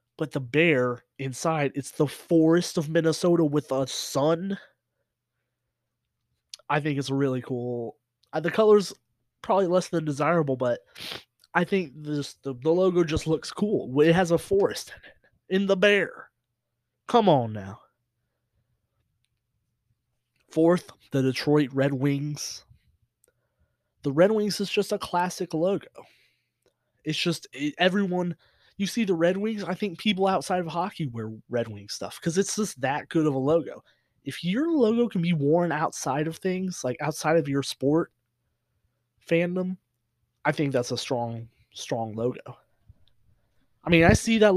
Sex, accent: male, American